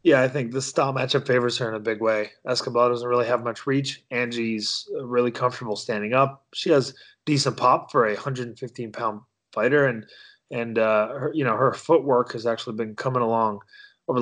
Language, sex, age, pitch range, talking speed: English, male, 30-49, 110-130 Hz, 185 wpm